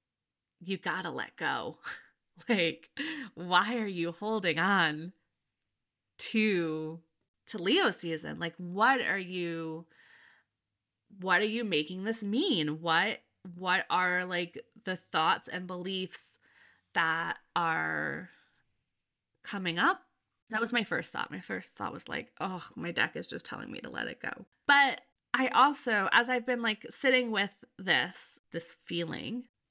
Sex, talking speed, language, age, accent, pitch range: female, 140 wpm, English, 20-39, American, 180-250 Hz